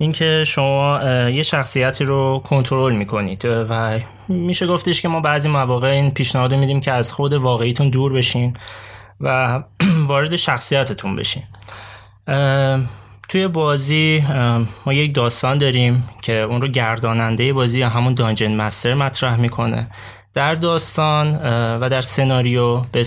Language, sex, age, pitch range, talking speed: Persian, male, 20-39, 115-140 Hz, 130 wpm